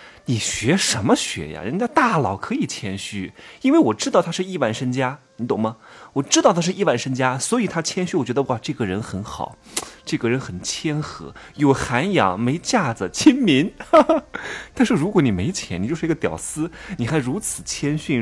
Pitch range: 120-180 Hz